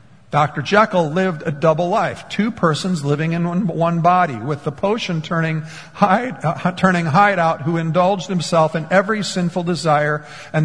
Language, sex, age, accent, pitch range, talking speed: English, male, 50-69, American, 145-180 Hz, 145 wpm